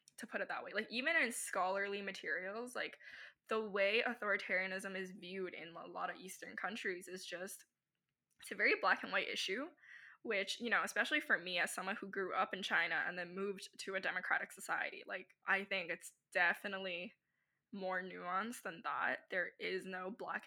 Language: English